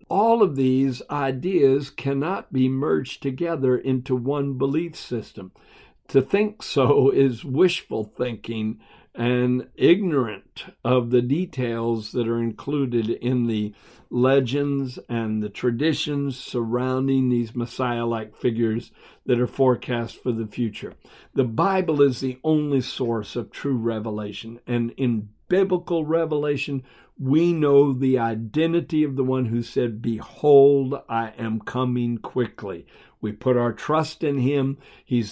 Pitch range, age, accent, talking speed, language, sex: 120-150 Hz, 60-79, American, 130 wpm, English, male